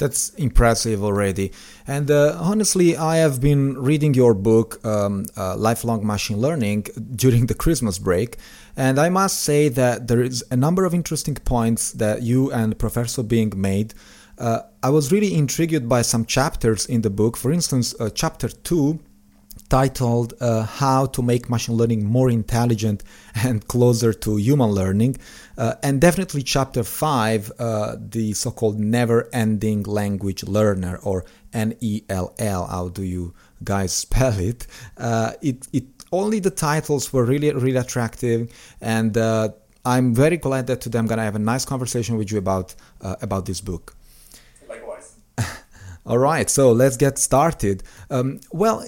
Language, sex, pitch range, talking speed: English, male, 110-135 Hz, 155 wpm